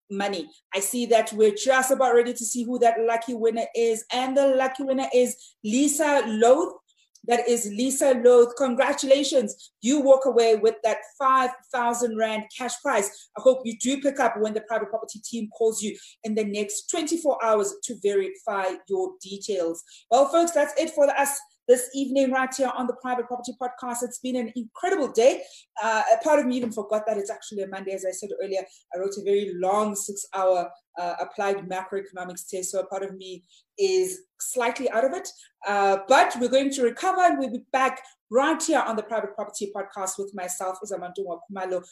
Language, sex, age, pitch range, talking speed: English, female, 30-49, 205-265 Hz, 195 wpm